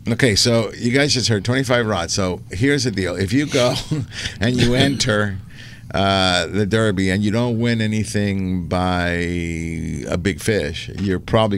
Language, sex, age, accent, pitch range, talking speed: English, male, 50-69, American, 90-110 Hz, 165 wpm